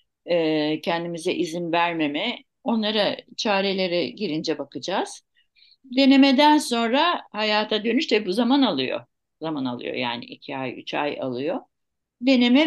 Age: 60-79